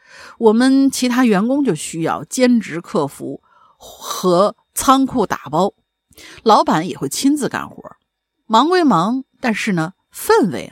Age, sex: 50-69, female